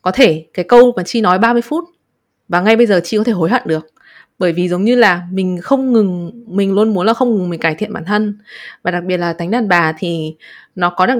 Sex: female